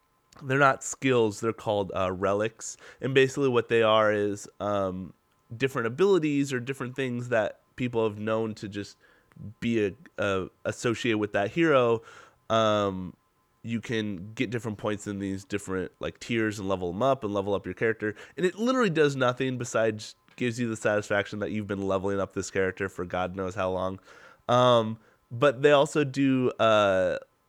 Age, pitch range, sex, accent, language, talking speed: 20-39, 100-135 Hz, male, American, English, 175 wpm